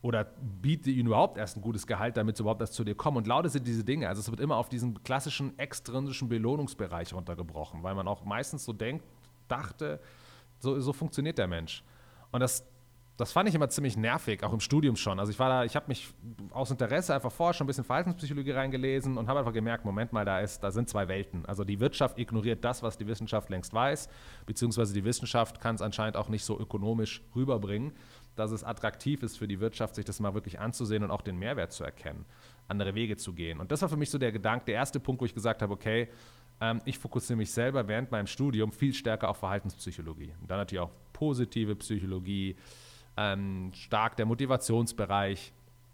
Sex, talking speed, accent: male, 210 wpm, German